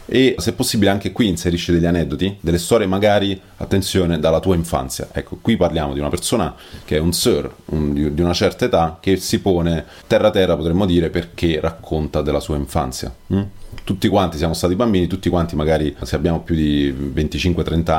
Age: 30-49